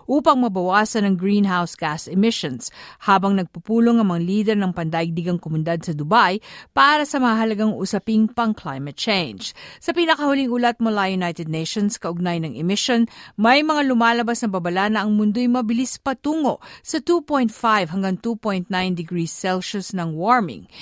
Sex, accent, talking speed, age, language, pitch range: female, native, 140 wpm, 50-69, Filipino, 180-235 Hz